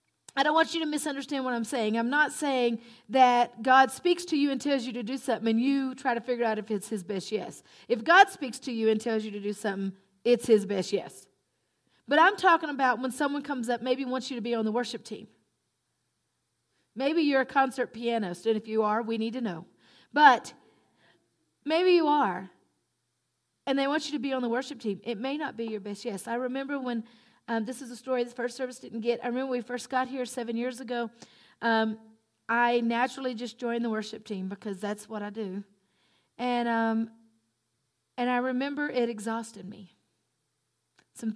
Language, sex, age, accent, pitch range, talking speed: English, female, 40-59, American, 215-255 Hz, 210 wpm